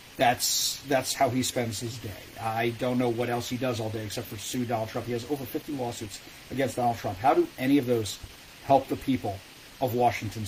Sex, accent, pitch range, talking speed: male, American, 115-140 Hz, 225 wpm